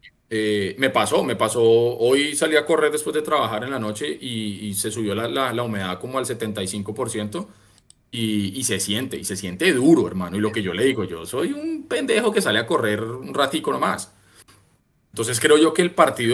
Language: Spanish